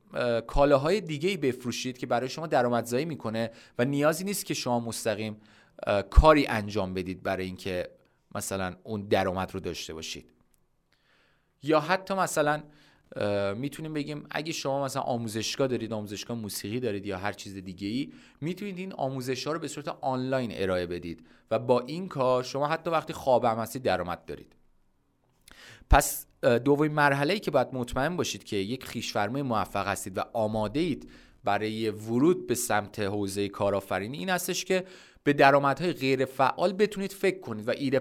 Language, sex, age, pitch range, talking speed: Persian, male, 30-49, 105-160 Hz, 155 wpm